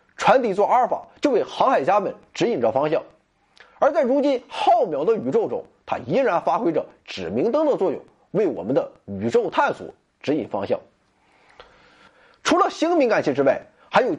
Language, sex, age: Chinese, male, 30-49